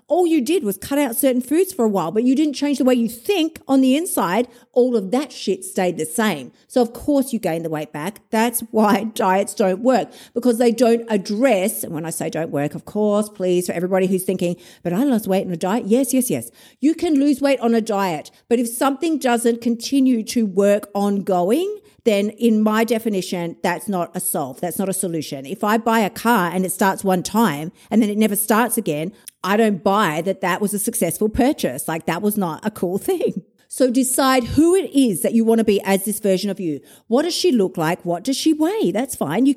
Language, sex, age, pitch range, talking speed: English, female, 50-69, 185-265 Hz, 235 wpm